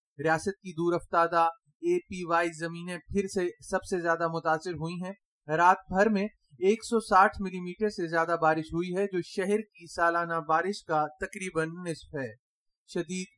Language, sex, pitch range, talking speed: Urdu, male, 165-190 Hz, 150 wpm